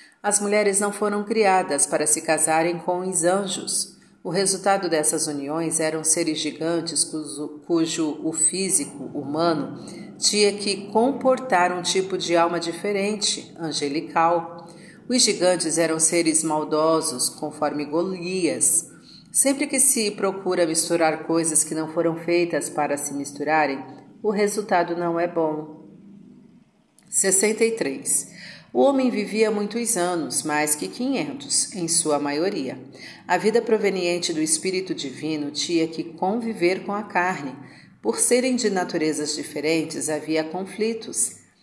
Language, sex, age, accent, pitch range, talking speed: Portuguese, female, 40-59, Brazilian, 160-205 Hz, 130 wpm